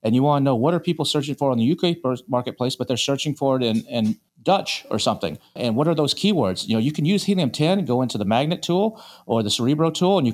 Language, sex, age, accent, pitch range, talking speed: English, male, 40-59, American, 110-145 Hz, 275 wpm